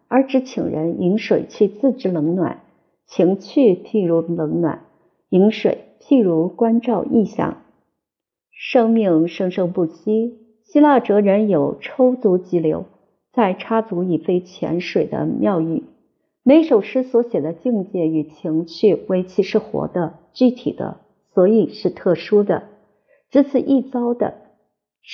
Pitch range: 170-225 Hz